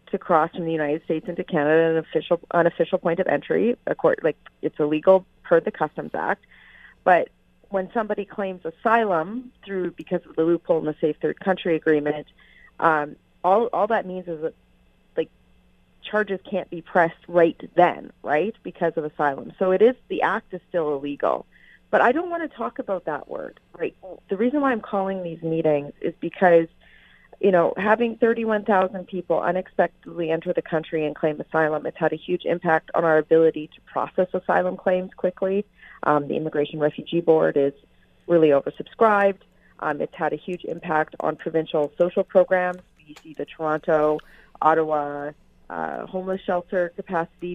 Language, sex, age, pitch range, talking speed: English, female, 30-49, 160-185 Hz, 170 wpm